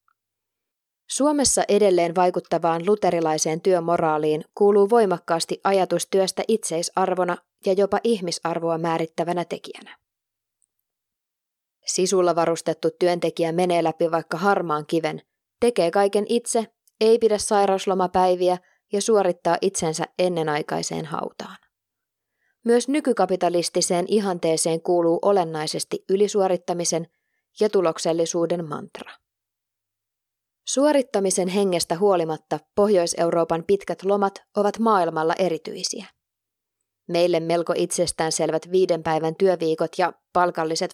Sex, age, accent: female, 20-39, native